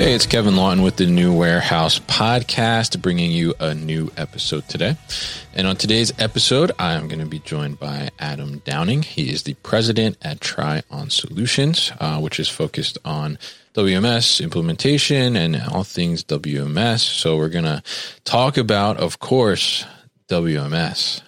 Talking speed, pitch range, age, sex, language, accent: 160 wpm, 80-110 Hz, 20-39, male, English, American